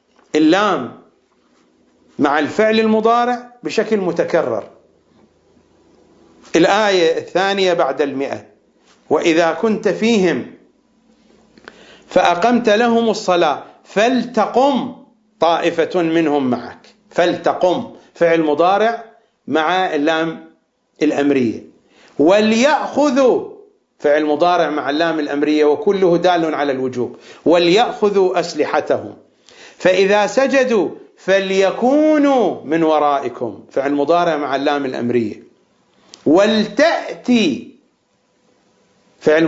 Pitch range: 150-230 Hz